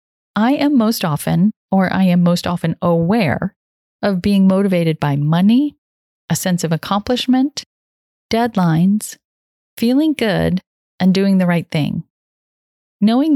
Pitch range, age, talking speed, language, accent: 170-225 Hz, 40-59, 125 wpm, English, American